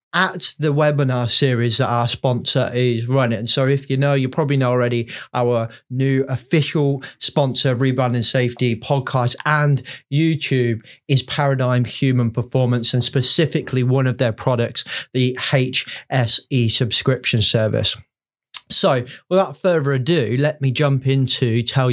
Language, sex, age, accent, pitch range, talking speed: English, male, 20-39, British, 125-155 Hz, 140 wpm